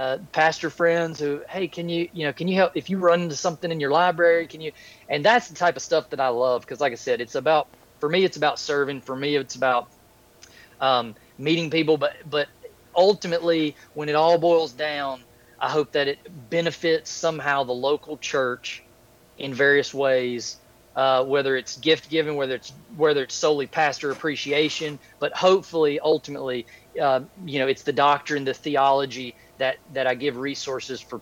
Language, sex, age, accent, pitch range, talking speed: English, male, 30-49, American, 130-160 Hz, 190 wpm